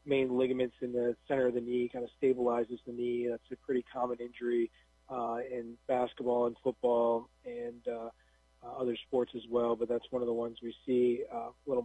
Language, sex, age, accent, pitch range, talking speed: English, male, 40-59, American, 120-130 Hz, 210 wpm